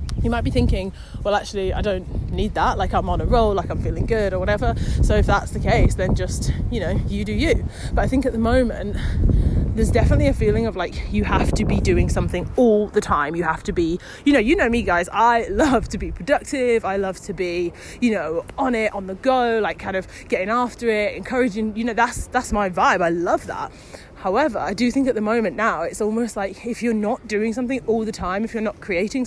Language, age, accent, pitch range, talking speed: English, 30-49, British, 195-245 Hz, 245 wpm